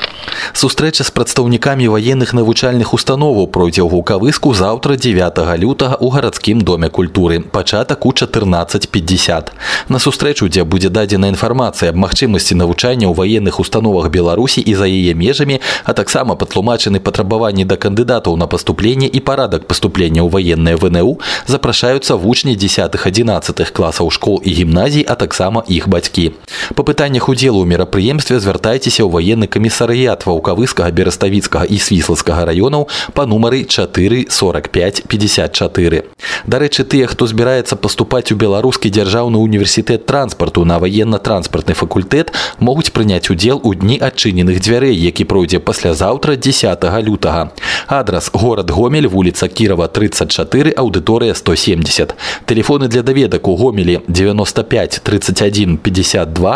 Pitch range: 90-125 Hz